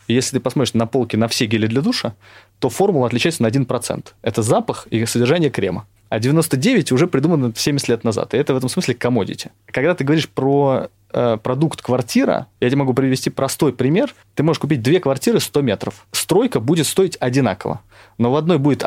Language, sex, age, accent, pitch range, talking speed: Russian, male, 20-39, native, 115-145 Hz, 195 wpm